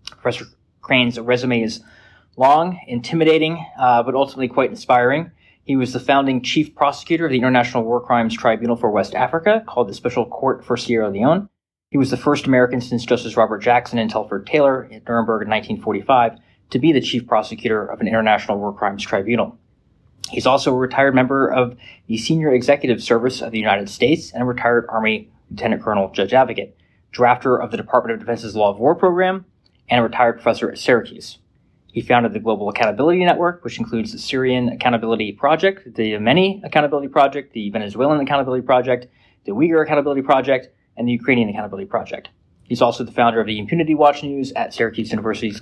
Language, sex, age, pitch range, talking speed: English, male, 20-39, 115-140 Hz, 185 wpm